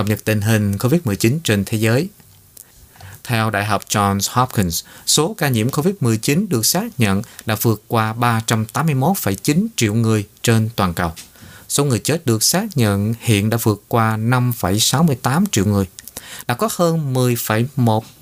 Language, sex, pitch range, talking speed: Vietnamese, male, 105-140 Hz, 150 wpm